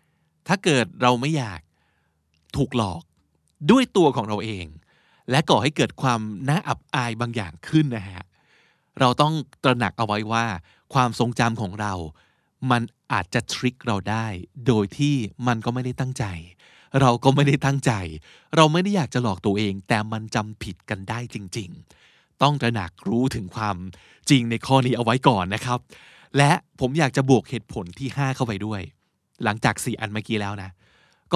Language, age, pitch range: Thai, 20-39, 105-140 Hz